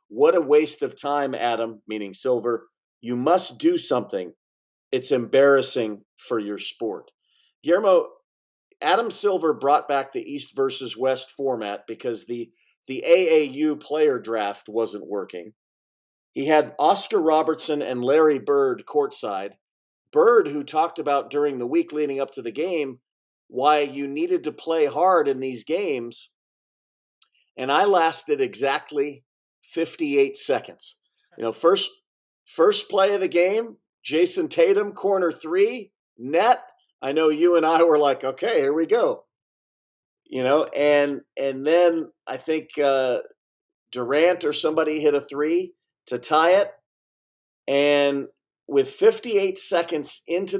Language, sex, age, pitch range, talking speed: English, male, 50-69, 135-230 Hz, 140 wpm